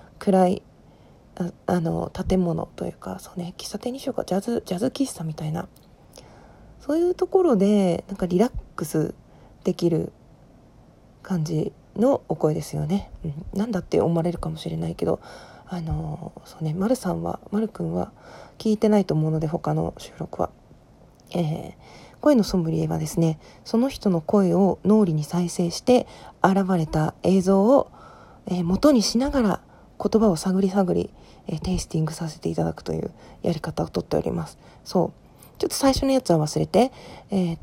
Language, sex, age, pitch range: Japanese, female, 40-59, 165-220 Hz